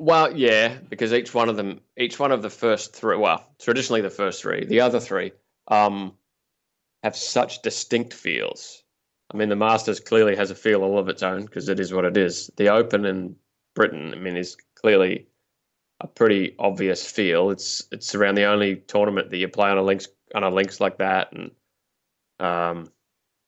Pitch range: 95-115 Hz